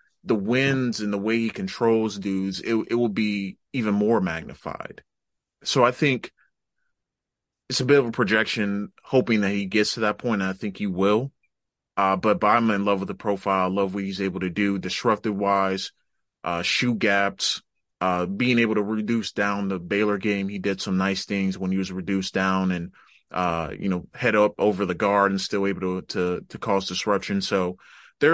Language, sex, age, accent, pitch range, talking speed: English, male, 30-49, American, 95-110 Hz, 195 wpm